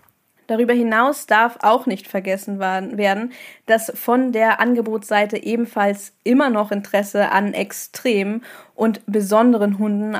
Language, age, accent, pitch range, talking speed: German, 10-29, German, 200-230 Hz, 120 wpm